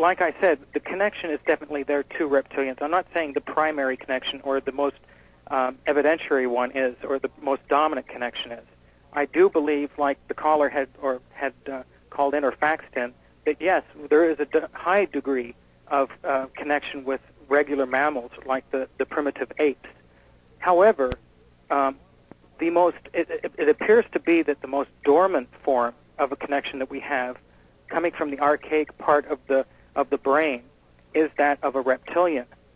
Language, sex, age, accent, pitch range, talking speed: English, male, 40-59, American, 130-155 Hz, 180 wpm